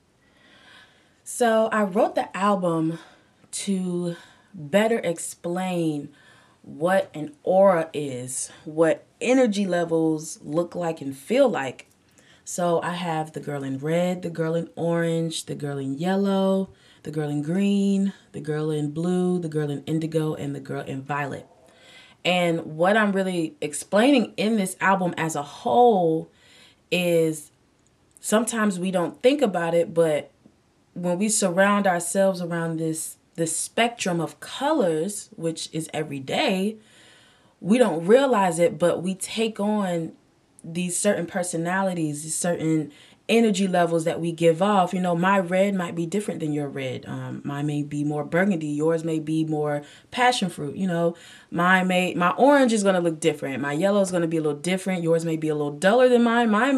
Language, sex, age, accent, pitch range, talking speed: English, female, 20-39, American, 160-195 Hz, 165 wpm